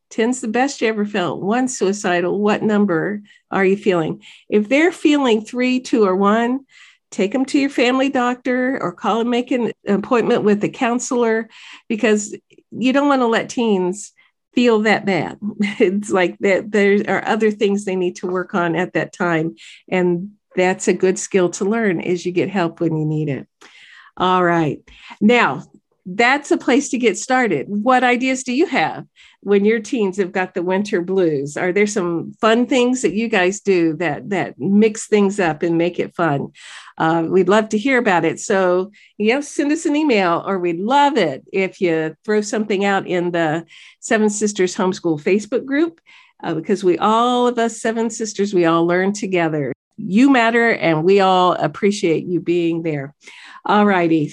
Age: 50-69